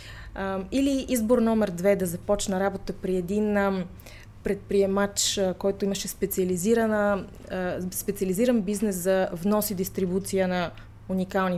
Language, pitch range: Bulgarian, 175-220 Hz